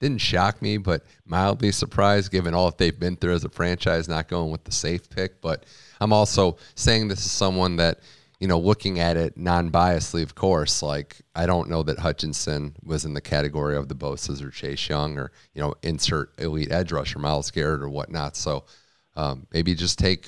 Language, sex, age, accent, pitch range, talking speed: English, male, 30-49, American, 80-100 Hz, 205 wpm